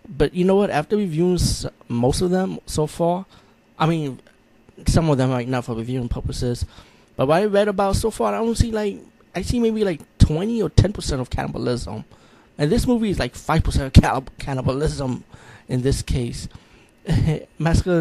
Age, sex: 20-39, male